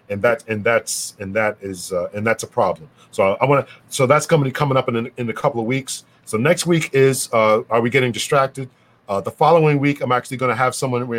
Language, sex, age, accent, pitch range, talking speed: English, male, 40-59, American, 110-130 Hz, 245 wpm